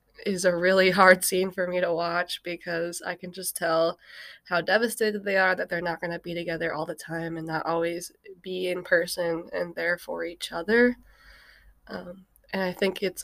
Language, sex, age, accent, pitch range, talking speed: English, female, 20-39, American, 170-195 Hz, 195 wpm